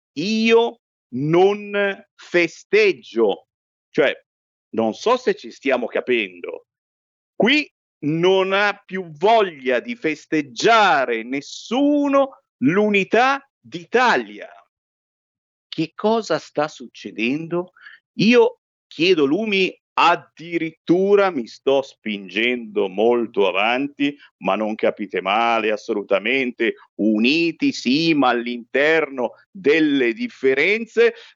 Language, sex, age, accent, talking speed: Italian, male, 50-69, native, 85 wpm